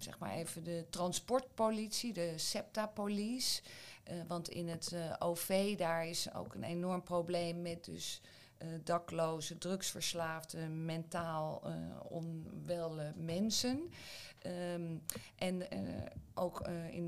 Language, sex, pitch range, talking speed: Dutch, female, 165-195 Hz, 120 wpm